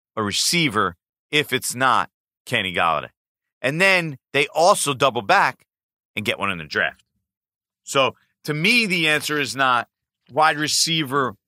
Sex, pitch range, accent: male, 90-140 Hz, American